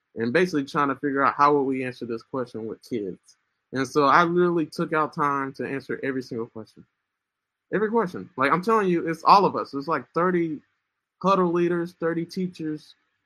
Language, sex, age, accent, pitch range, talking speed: English, male, 20-39, American, 130-170 Hz, 195 wpm